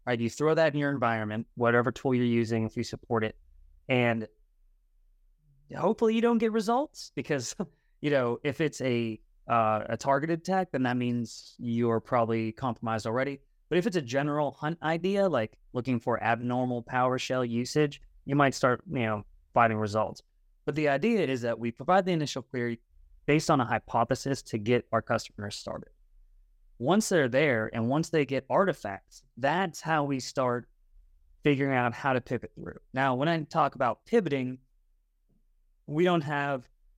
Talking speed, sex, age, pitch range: 170 wpm, male, 20-39, 115-150 Hz